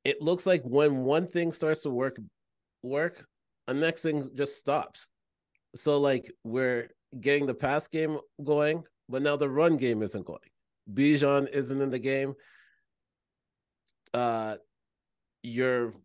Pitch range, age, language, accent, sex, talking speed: 120-145 Hz, 30-49, English, American, male, 140 wpm